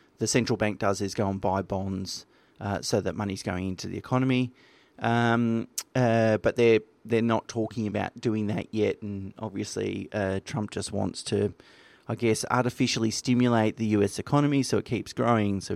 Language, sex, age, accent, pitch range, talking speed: English, male, 30-49, Australian, 100-120 Hz, 180 wpm